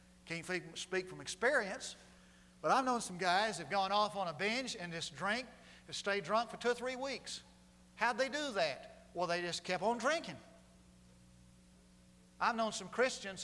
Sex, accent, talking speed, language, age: male, American, 185 wpm, English, 40-59